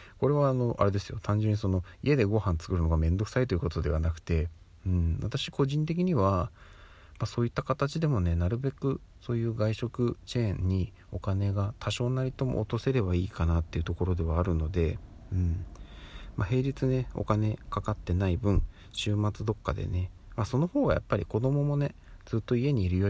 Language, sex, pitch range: Japanese, male, 85-110 Hz